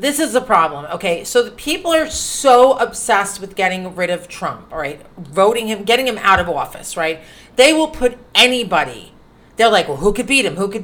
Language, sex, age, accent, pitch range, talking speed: English, female, 40-59, American, 180-245 Hz, 215 wpm